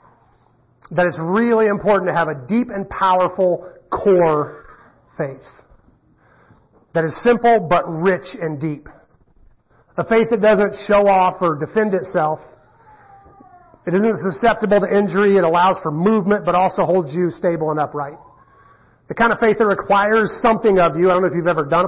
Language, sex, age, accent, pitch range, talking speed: English, male, 30-49, American, 155-205 Hz, 165 wpm